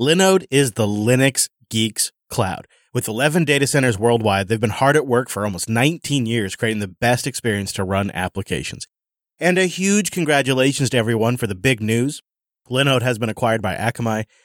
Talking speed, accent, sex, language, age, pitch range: 180 wpm, American, male, English, 30-49, 105-140 Hz